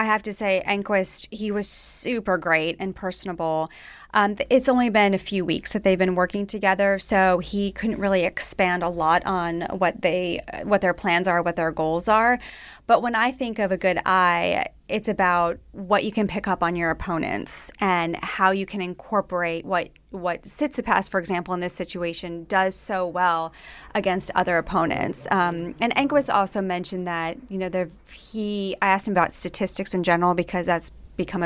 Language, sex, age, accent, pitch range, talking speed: English, female, 20-39, American, 175-205 Hz, 185 wpm